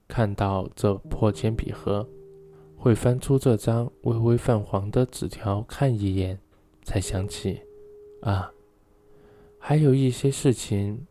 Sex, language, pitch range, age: male, Chinese, 100-125 Hz, 20-39